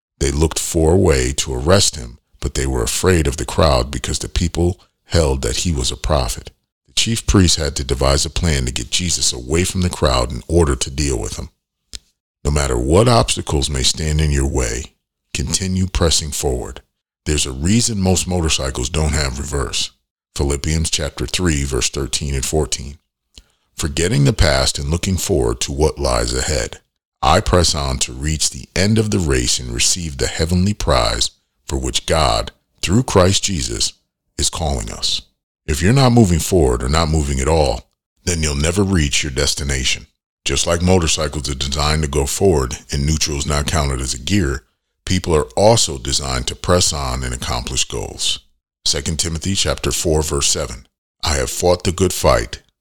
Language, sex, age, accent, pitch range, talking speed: English, male, 40-59, American, 70-85 Hz, 180 wpm